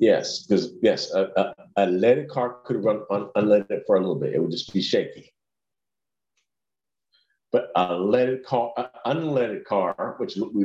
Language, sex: English, male